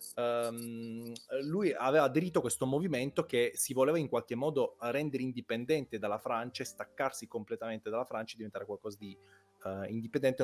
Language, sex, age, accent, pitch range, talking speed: Italian, male, 30-49, native, 115-150 Hz, 155 wpm